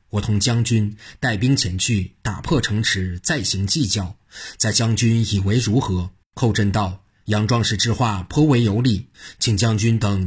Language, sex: Chinese, male